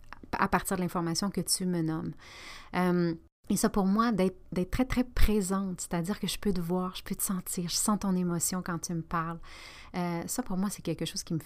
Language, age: French, 30-49